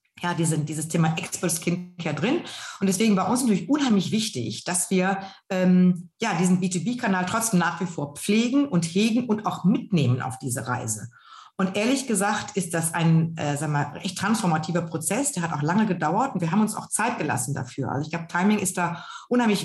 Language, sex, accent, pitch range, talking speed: German, female, German, 170-210 Hz, 200 wpm